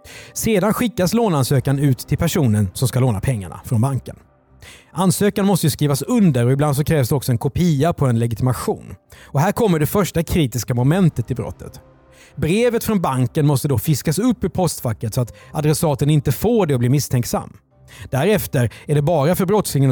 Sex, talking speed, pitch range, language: male, 180 wpm, 125-180 Hz, Swedish